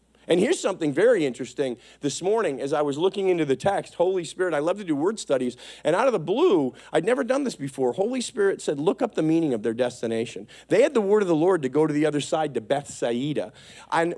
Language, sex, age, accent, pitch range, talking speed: English, male, 40-59, American, 165-265 Hz, 250 wpm